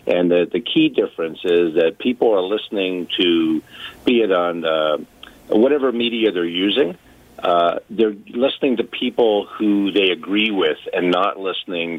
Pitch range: 90-120 Hz